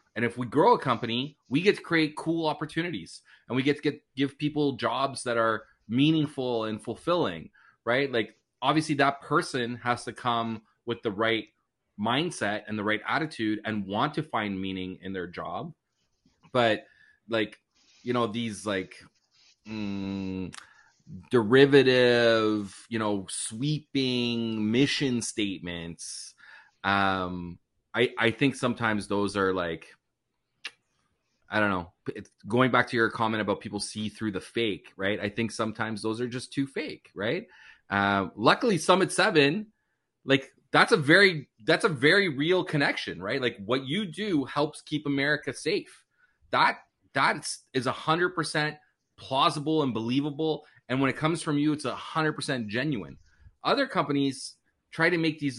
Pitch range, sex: 110-150 Hz, male